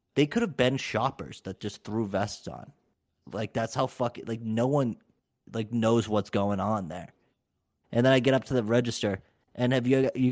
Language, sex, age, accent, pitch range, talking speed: English, male, 30-49, American, 100-120 Hz, 210 wpm